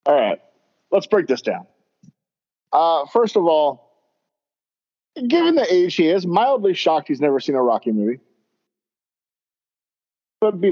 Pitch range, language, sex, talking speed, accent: 115-160 Hz, English, male, 140 wpm, American